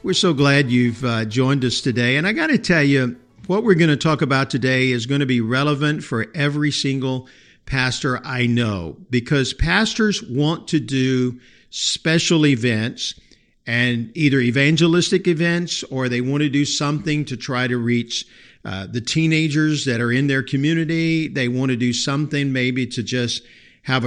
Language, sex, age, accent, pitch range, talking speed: English, male, 50-69, American, 125-155 Hz, 170 wpm